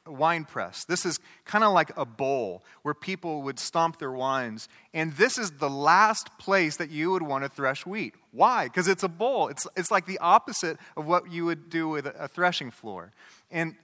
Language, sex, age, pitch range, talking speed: English, male, 30-49, 135-180 Hz, 210 wpm